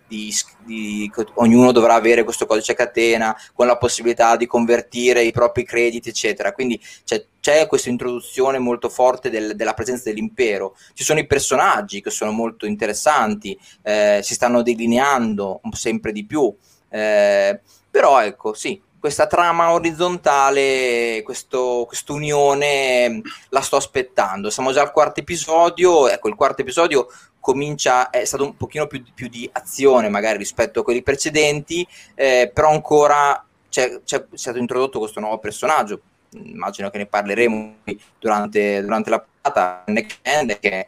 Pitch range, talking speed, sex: 110-145 Hz, 145 wpm, male